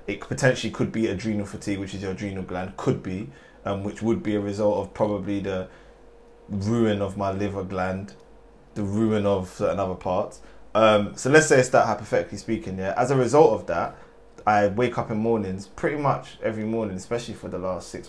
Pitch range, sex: 95-115 Hz, male